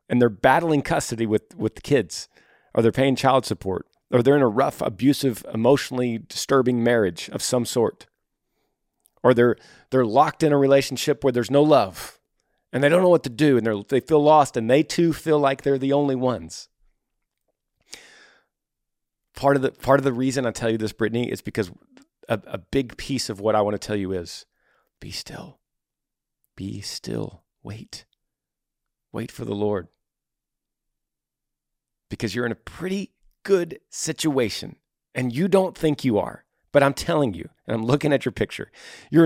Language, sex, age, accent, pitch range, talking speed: English, male, 40-59, American, 115-155 Hz, 175 wpm